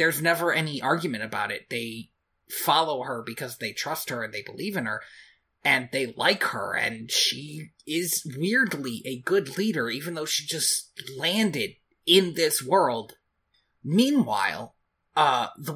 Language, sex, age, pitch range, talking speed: English, male, 20-39, 135-185 Hz, 150 wpm